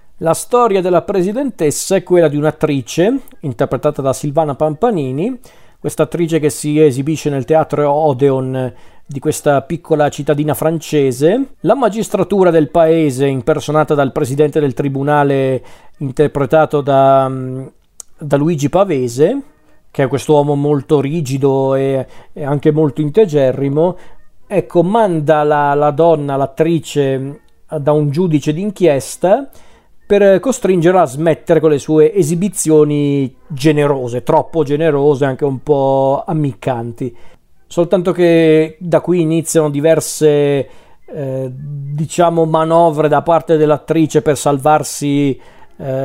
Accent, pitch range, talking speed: native, 140-165 Hz, 115 wpm